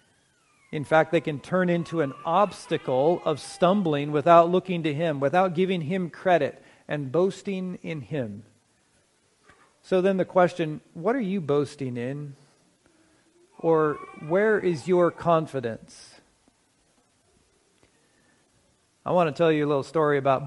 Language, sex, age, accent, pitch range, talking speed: English, male, 40-59, American, 140-170 Hz, 130 wpm